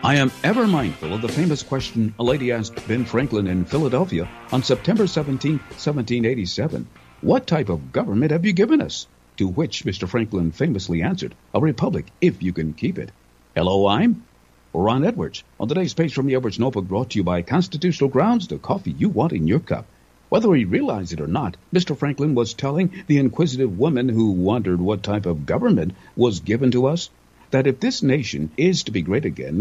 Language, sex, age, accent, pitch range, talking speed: English, male, 50-69, American, 100-155 Hz, 195 wpm